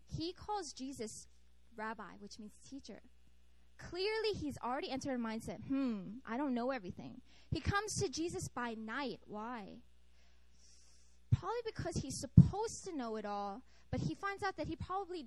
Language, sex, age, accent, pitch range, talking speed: English, female, 10-29, American, 215-335 Hz, 155 wpm